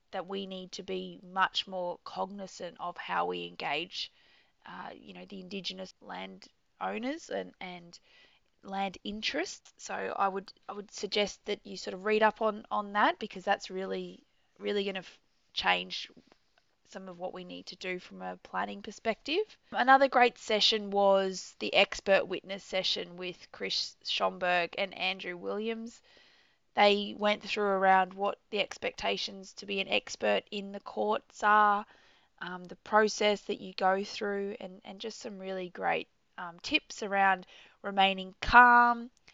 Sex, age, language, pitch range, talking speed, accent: female, 20-39, English, 190-215 Hz, 160 wpm, Australian